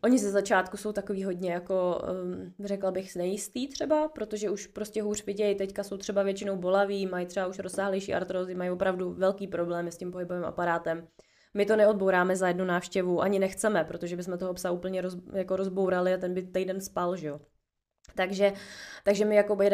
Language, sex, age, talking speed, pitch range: Czech, female, 20-39, 190 wpm, 180-200 Hz